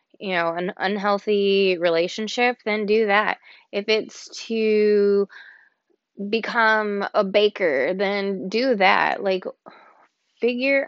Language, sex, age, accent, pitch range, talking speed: English, female, 20-39, American, 175-215 Hz, 105 wpm